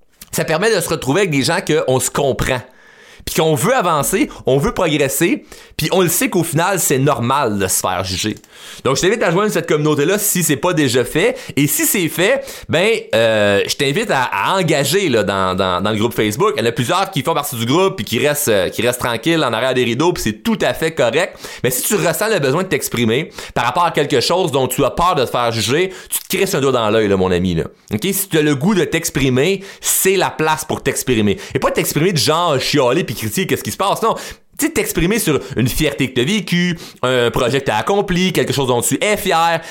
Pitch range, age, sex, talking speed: 125-175 Hz, 30-49, male, 245 wpm